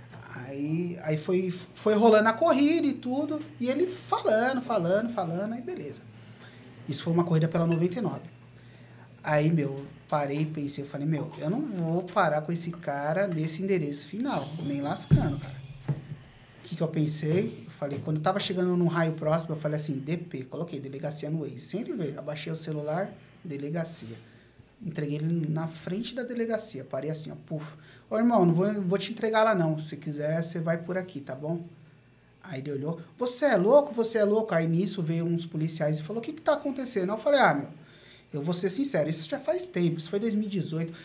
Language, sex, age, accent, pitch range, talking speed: Portuguese, male, 30-49, Brazilian, 150-210 Hz, 195 wpm